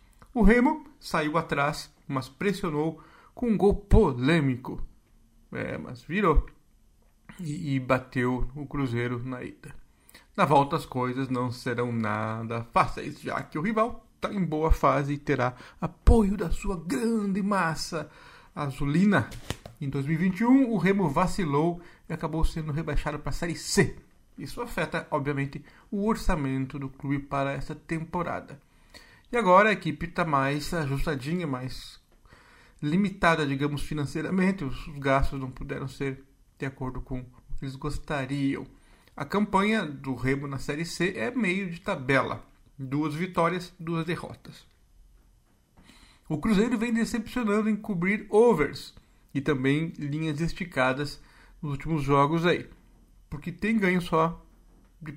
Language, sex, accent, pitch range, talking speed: Portuguese, male, Brazilian, 135-185 Hz, 135 wpm